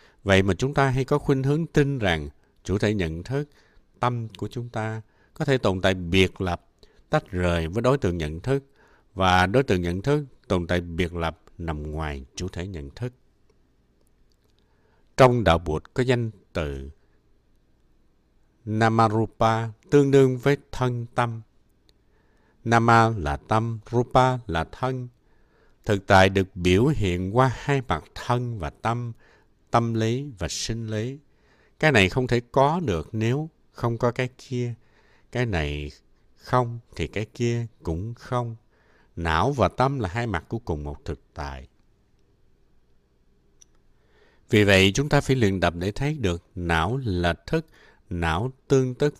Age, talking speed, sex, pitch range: 60-79, 155 wpm, male, 85-125 Hz